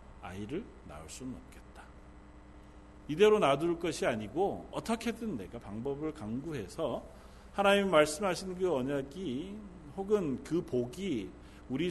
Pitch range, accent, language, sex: 110-175 Hz, native, Korean, male